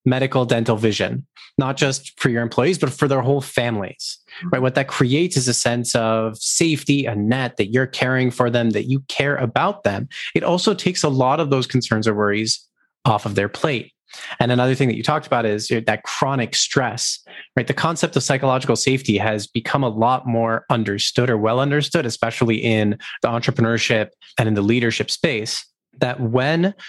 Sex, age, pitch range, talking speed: male, 30-49, 115-145 Hz, 190 wpm